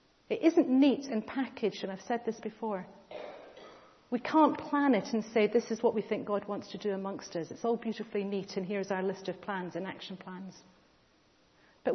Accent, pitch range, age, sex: British, 205-260 Hz, 40-59, female